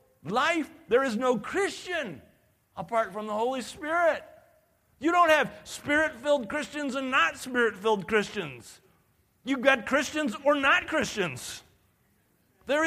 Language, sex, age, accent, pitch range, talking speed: English, male, 50-69, American, 205-305 Hz, 120 wpm